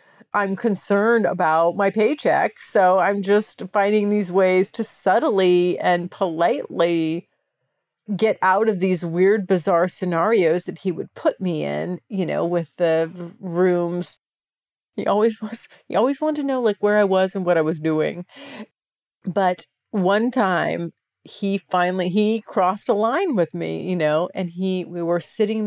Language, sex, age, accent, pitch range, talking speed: English, female, 40-59, American, 175-210 Hz, 160 wpm